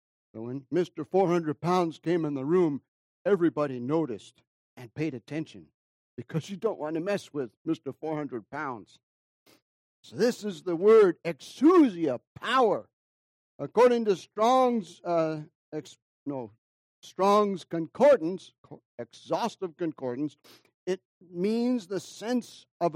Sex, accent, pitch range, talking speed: male, American, 140-210 Hz, 120 wpm